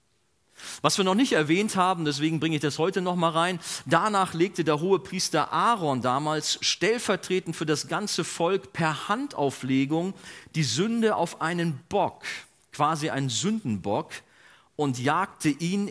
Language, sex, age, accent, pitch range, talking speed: German, male, 40-59, German, 130-180 Hz, 145 wpm